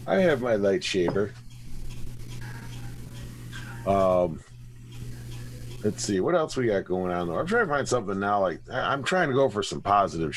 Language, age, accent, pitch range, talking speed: English, 40-59, American, 110-125 Hz, 170 wpm